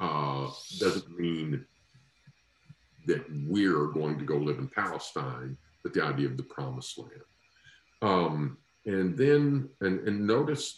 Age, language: 50-69, English